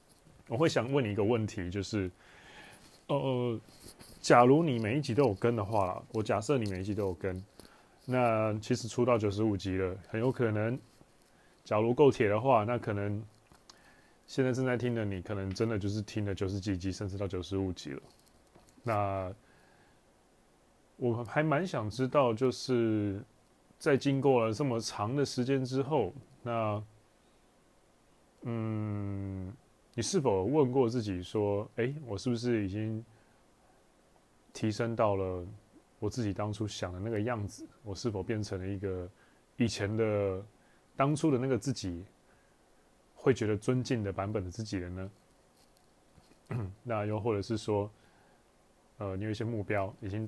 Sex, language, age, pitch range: male, Chinese, 20-39, 100-120 Hz